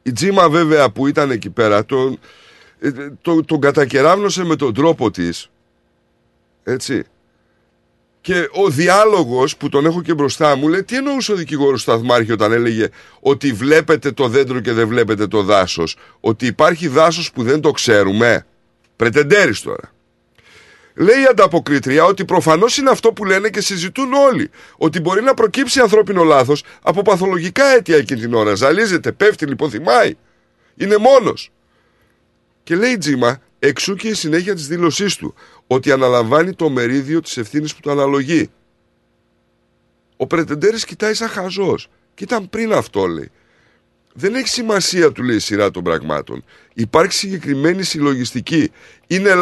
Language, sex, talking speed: Greek, male, 150 wpm